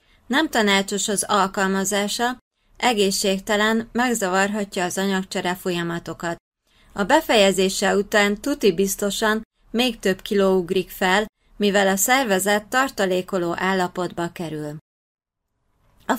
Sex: female